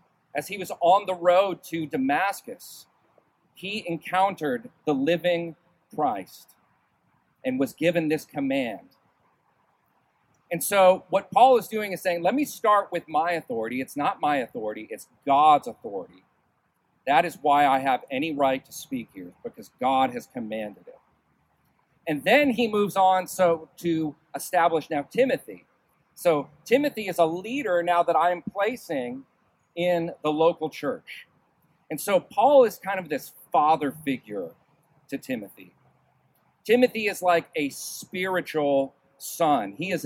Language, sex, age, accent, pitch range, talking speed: English, male, 40-59, American, 150-195 Hz, 145 wpm